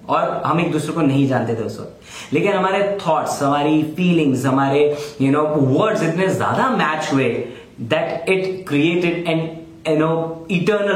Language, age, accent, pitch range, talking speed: Hindi, 30-49, native, 130-165 Hz, 150 wpm